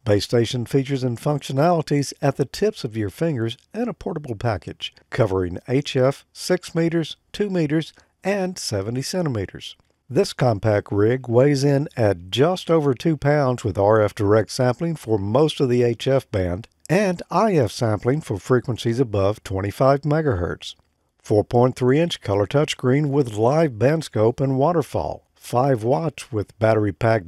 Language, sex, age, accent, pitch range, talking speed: English, male, 50-69, American, 110-150 Hz, 145 wpm